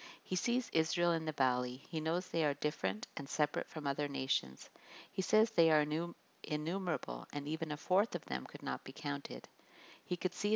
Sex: female